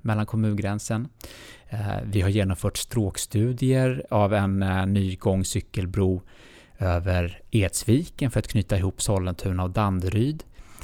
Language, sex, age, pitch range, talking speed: Swedish, male, 20-39, 95-115 Hz, 105 wpm